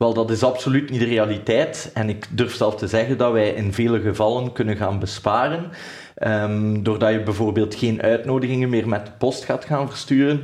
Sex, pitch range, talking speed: male, 110-130 Hz, 195 wpm